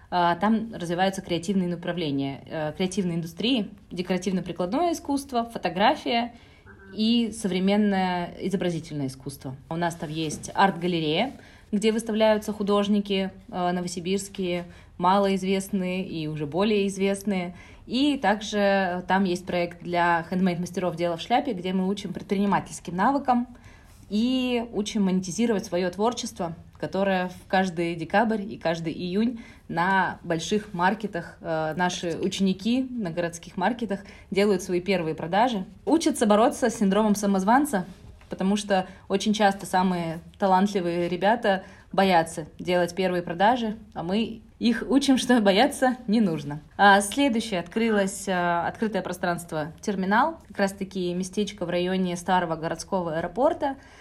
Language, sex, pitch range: Russian, female, 175-215 Hz